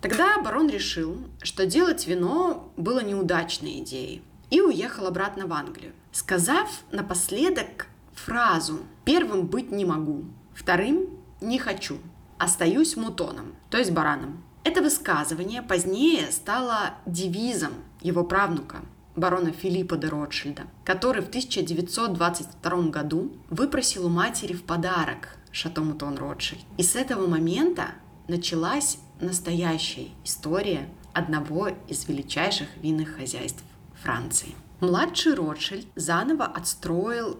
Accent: native